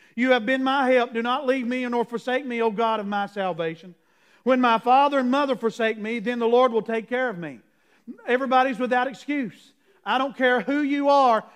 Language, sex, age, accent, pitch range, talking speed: English, male, 50-69, American, 205-245 Hz, 215 wpm